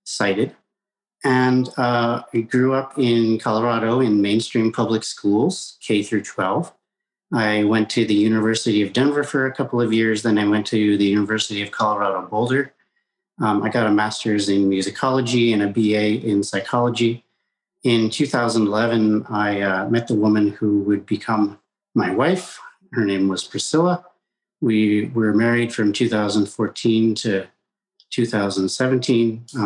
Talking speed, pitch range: 145 wpm, 105-125 Hz